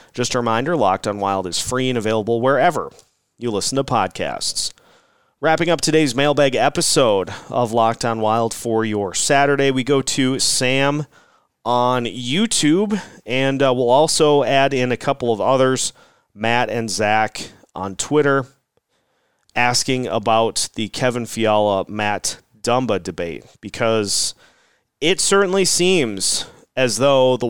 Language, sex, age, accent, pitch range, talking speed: English, male, 30-49, American, 110-135 Hz, 135 wpm